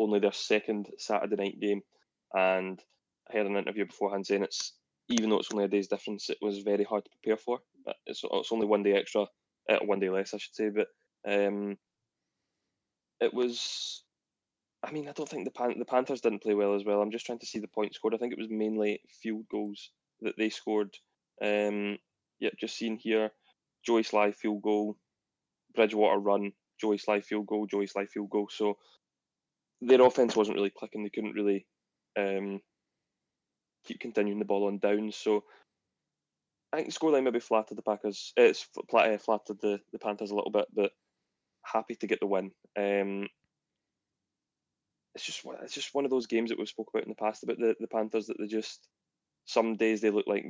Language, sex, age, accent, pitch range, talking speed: English, male, 20-39, British, 100-110 Hz, 195 wpm